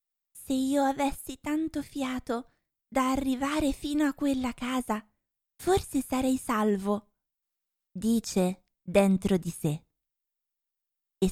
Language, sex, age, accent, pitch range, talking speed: Italian, female, 20-39, native, 180-230 Hz, 100 wpm